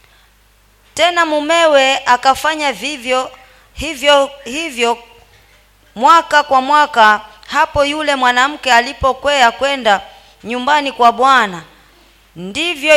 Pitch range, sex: 250-310 Hz, female